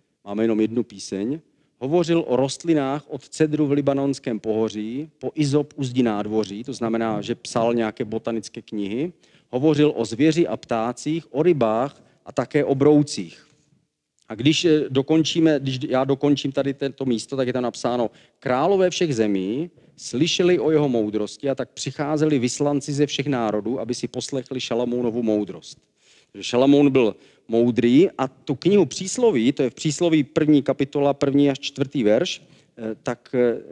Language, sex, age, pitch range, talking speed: Czech, male, 40-59, 115-150 Hz, 150 wpm